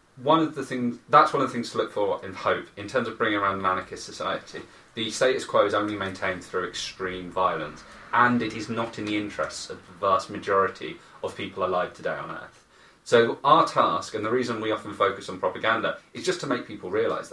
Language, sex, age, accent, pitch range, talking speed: English, male, 30-49, British, 100-125 Hz, 225 wpm